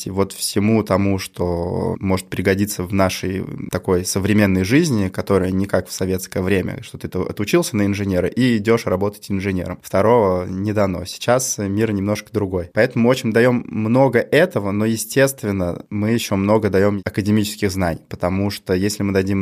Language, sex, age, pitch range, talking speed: Russian, male, 20-39, 95-115 Hz, 160 wpm